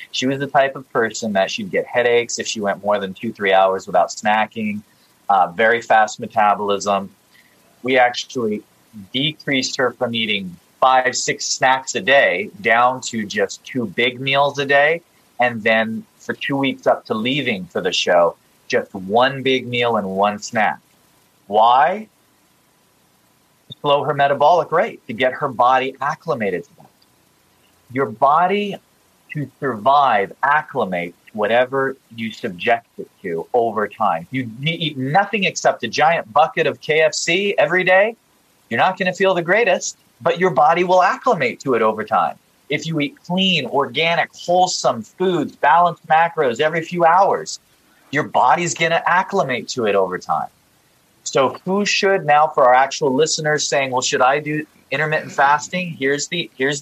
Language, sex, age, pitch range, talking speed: English, male, 30-49, 115-165 Hz, 160 wpm